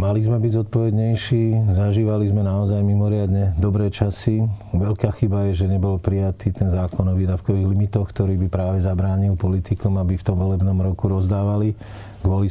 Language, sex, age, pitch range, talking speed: Slovak, male, 40-59, 95-105 Hz, 160 wpm